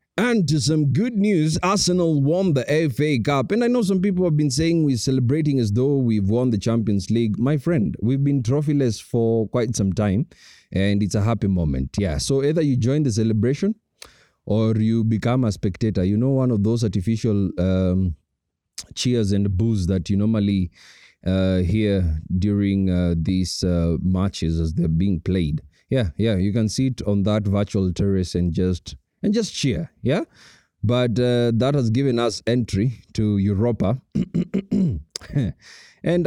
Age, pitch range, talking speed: 30-49, 100-145 Hz, 170 wpm